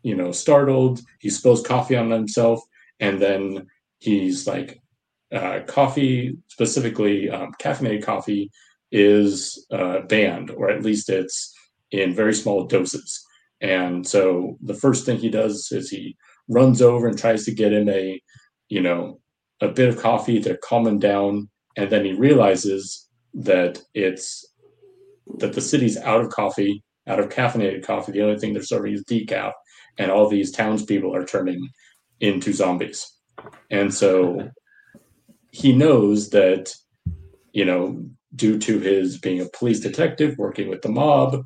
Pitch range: 100-125 Hz